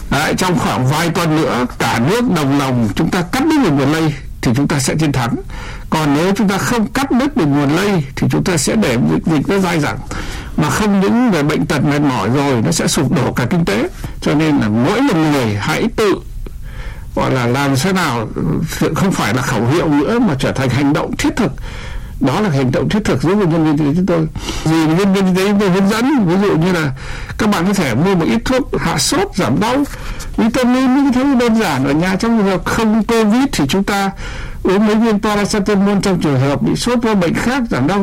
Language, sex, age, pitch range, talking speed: Vietnamese, male, 60-79, 140-210 Hz, 240 wpm